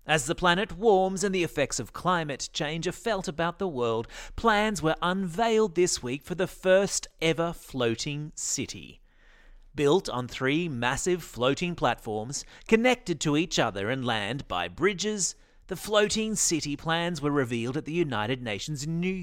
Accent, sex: Australian, male